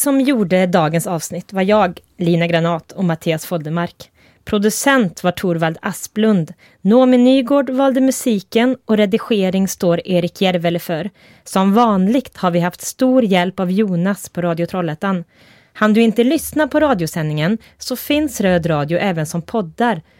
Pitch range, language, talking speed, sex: 170-220 Hz, English, 145 wpm, female